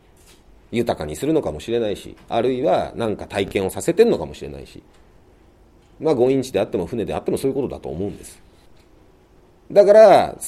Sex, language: male, Japanese